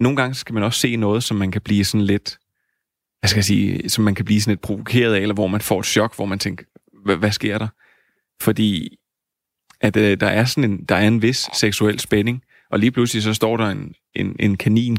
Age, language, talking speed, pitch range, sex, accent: 30-49, Danish, 225 wpm, 100-115 Hz, male, native